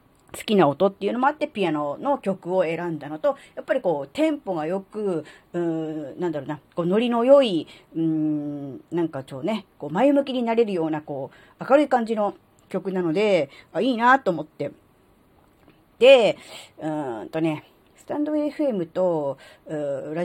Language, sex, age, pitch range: Japanese, female, 40-59, 160-250 Hz